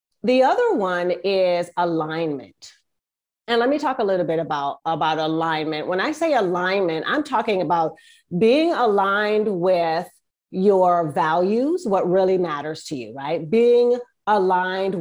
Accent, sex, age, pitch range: American, female, 30-49, 170-210 Hz